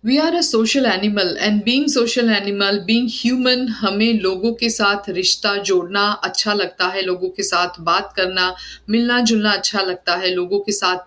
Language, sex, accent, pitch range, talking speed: Hindi, female, native, 185-225 Hz, 180 wpm